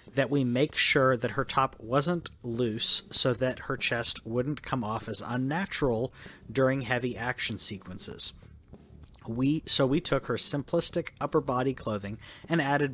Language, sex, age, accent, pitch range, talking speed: English, male, 40-59, American, 110-135 Hz, 155 wpm